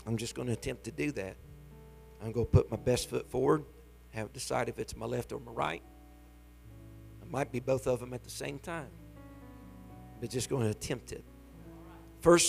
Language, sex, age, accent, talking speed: English, male, 50-69, American, 205 wpm